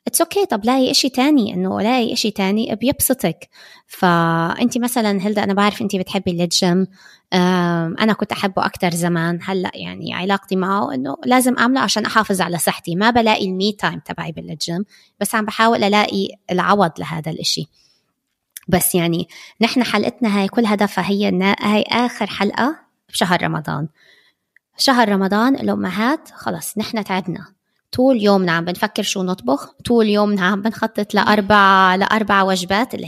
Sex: female